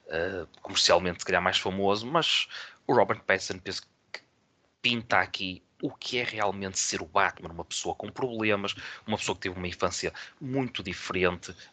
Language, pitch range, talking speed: Portuguese, 95-120 Hz, 155 wpm